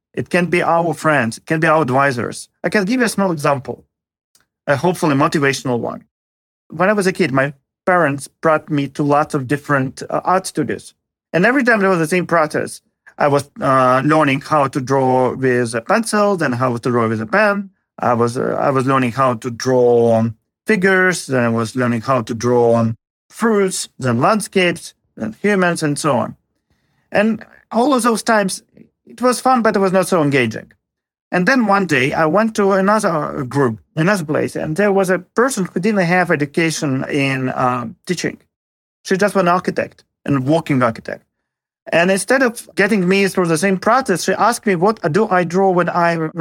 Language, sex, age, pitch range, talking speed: English, male, 40-59, 135-195 Hz, 195 wpm